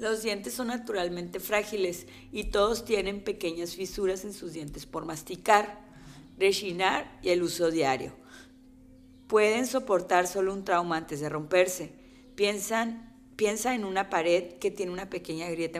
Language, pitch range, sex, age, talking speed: Spanish, 175-225 Hz, female, 30-49, 145 wpm